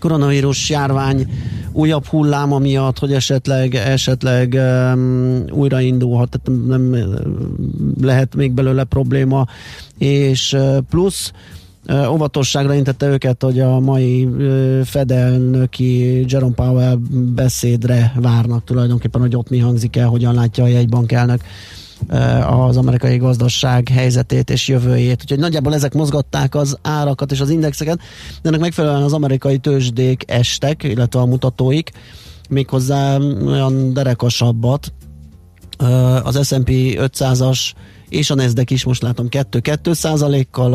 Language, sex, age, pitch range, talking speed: Hungarian, male, 30-49, 125-140 Hz, 120 wpm